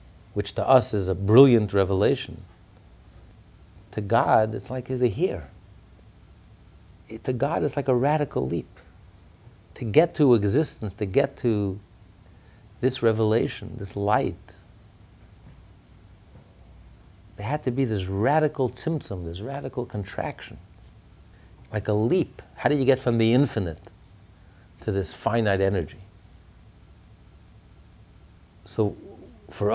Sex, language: male, English